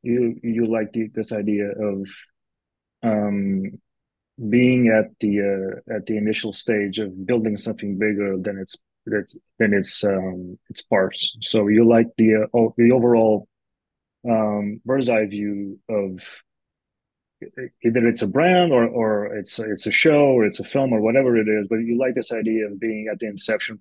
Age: 30-49